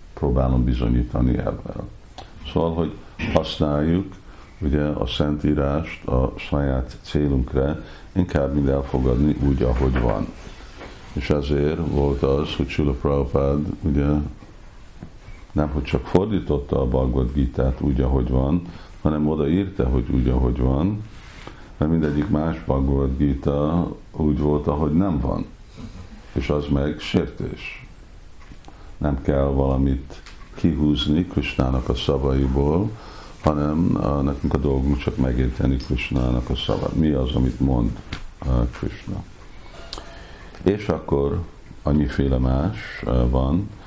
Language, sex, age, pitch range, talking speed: Hungarian, male, 60-79, 65-80 Hz, 110 wpm